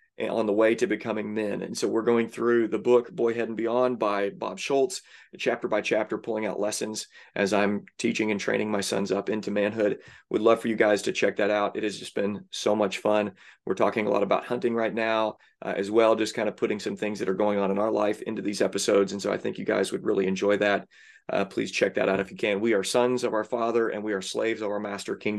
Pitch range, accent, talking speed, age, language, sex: 105-120 Hz, American, 260 wpm, 30-49, English, male